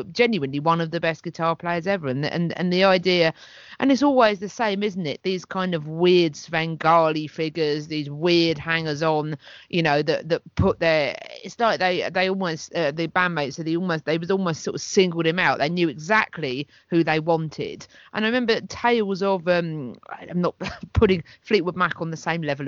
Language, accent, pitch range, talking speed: English, British, 145-180 Hz, 200 wpm